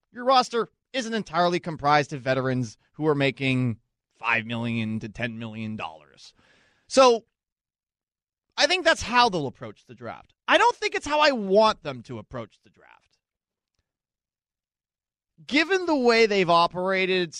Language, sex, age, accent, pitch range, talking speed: English, male, 30-49, American, 125-200 Hz, 140 wpm